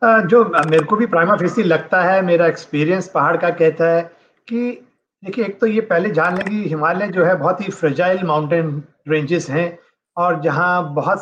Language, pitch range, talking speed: Hindi, 165-225 Hz, 180 wpm